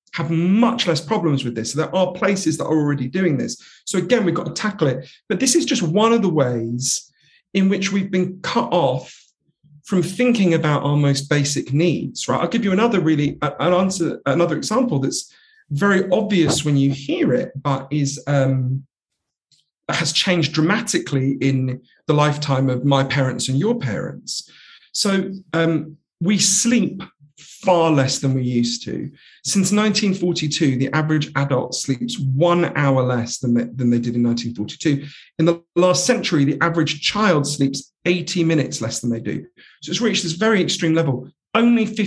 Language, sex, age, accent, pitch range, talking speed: English, male, 40-59, British, 135-185 Hz, 175 wpm